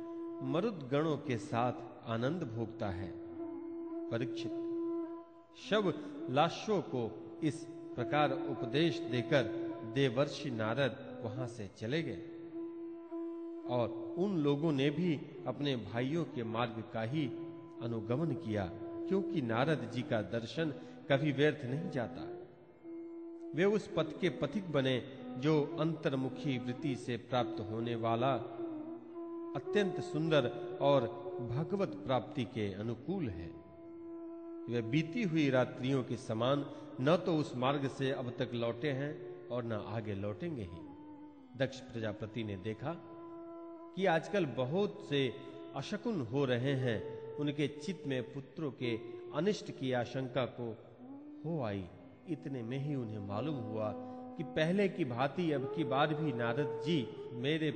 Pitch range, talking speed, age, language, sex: 120-190 Hz, 125 wpm, 40-59, Hindi, male